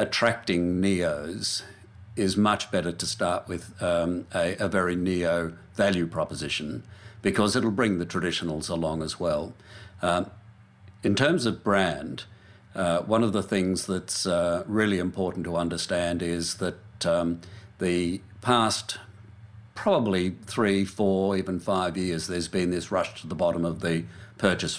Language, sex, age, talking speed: English, male, 60-79, 145 wpm